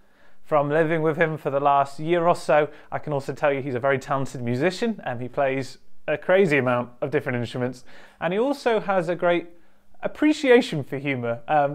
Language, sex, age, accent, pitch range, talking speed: English, male, 30-49, British, 120-160 Hz, 200 wpm